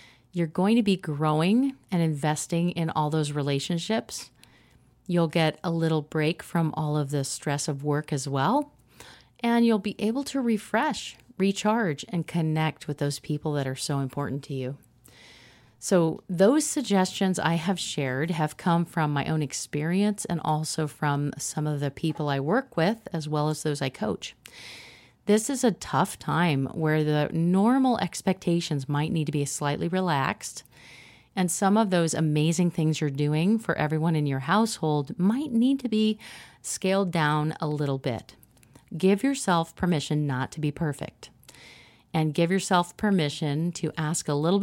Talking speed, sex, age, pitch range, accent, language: 165 wpm, female, 30-49, 145-185 Hz, American, English